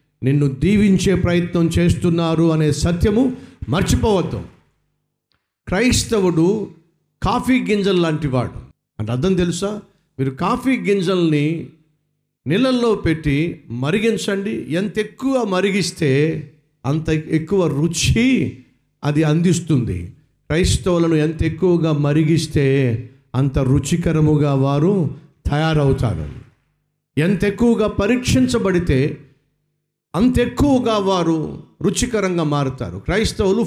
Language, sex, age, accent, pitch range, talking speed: Telugu, male, 50-69, native, 145-195 Hz, 80 wpm